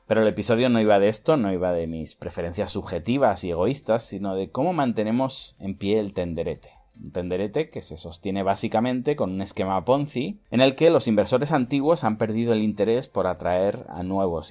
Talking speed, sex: 195 wpm, male